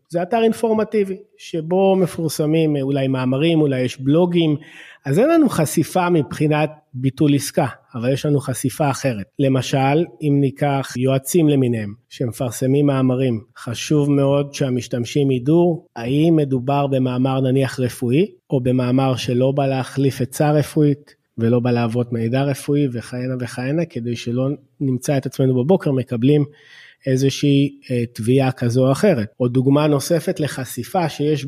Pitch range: 130-155 Hz